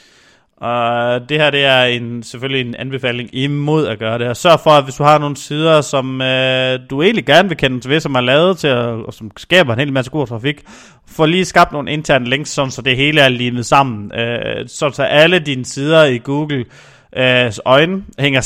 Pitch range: 130-160 Hz